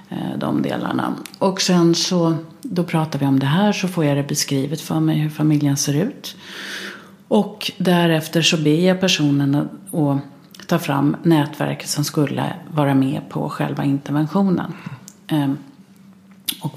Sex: female